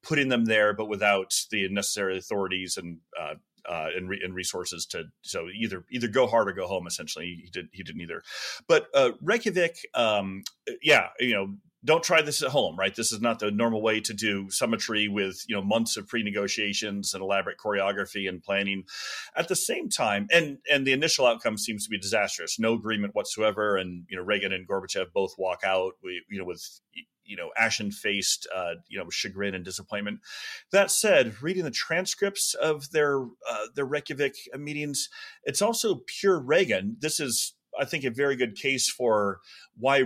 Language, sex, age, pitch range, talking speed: English, male, 30-49, 100-140 Hz, 190 wpm